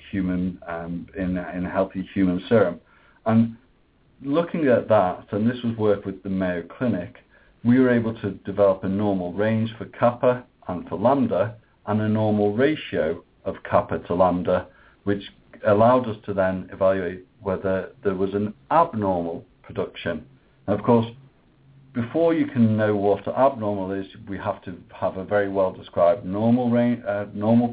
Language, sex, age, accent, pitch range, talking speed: English, male, 50-69, British, 95-115 Hz, 160 wpm